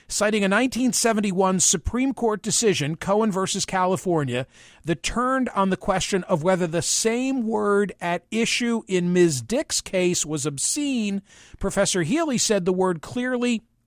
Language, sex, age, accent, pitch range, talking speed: English, male, 50-69, American, 180-245 Hz, 150 wpm